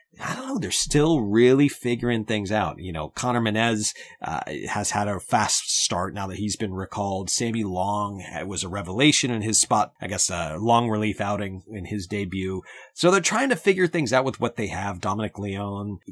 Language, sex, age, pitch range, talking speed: English, male, 30-49, 100-130 Hz, 200 wpm